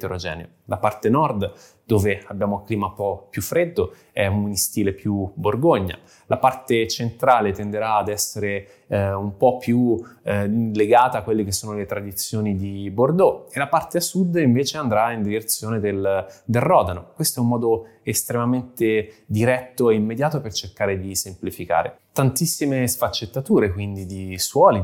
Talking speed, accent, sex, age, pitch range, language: 155 wpm, native, male, 20-39, 100-125 Hz, Italian